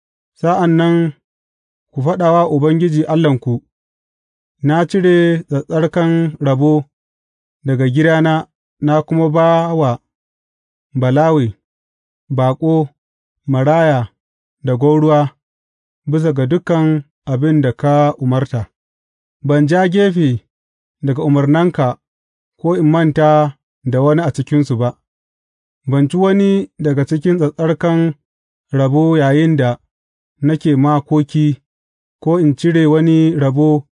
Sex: male